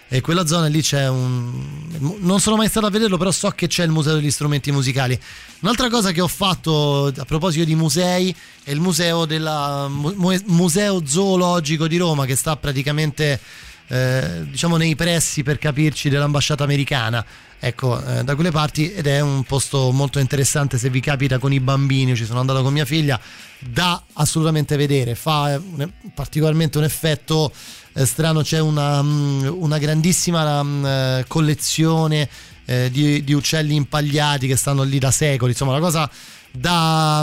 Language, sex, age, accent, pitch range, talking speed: Italian, male, 20-39, native, 140-180 Hz, 160 wpm